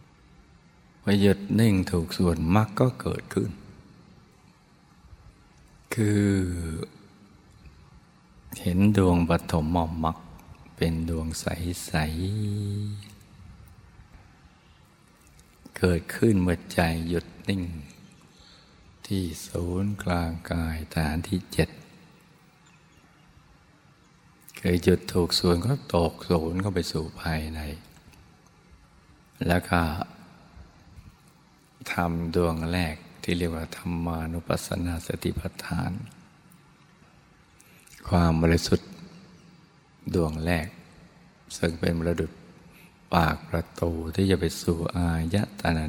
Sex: male